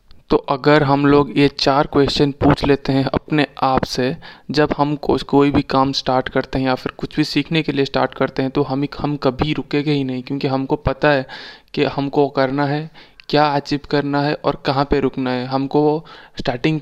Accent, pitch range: native, 135-145 Hz